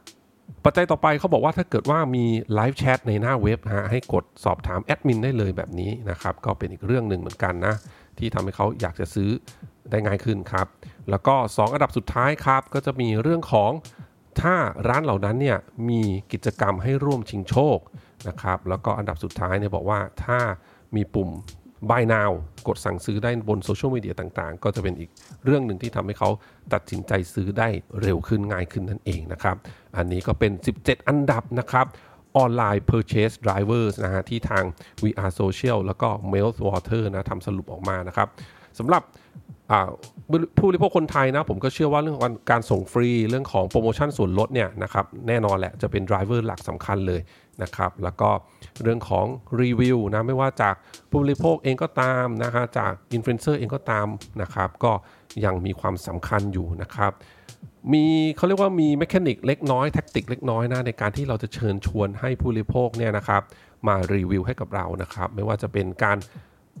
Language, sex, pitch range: English, male, 100-125 Hz